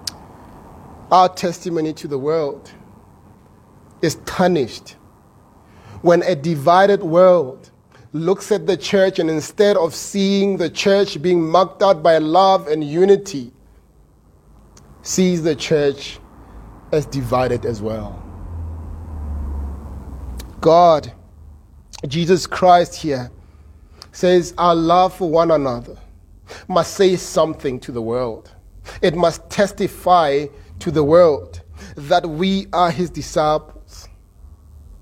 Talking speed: 105 wpm